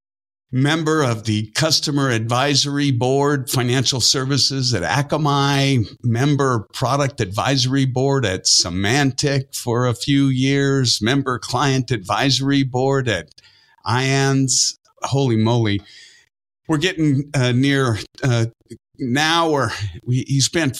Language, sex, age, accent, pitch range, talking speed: English, male, 50-69, American, 115-140 Hz, 115 wpm